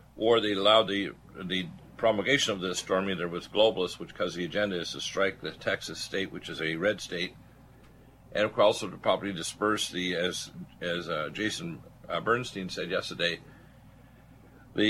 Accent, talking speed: American, 165 wpm